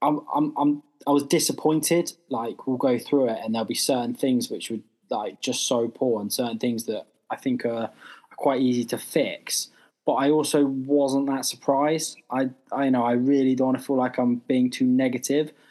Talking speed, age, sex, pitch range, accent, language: 220 wpm, 10-29, male, 120-145 Hz, British, English